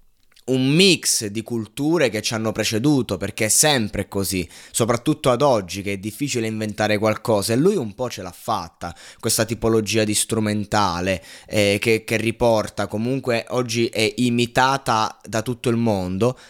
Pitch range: 110-135 Hz